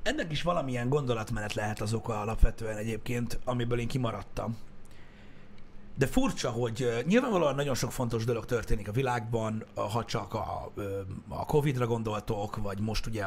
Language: Hungarian